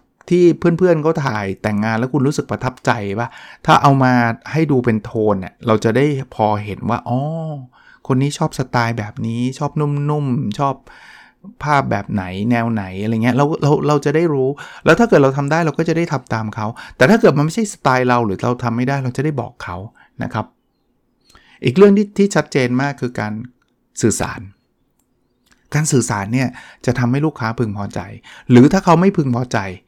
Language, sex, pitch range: English, male, 110-140 Hz